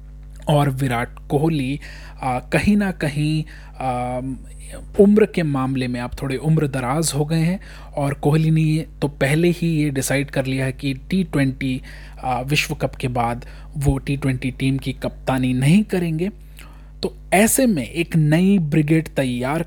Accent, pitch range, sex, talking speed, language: native, 135-165 Hz, male, 155 wpm, Hindi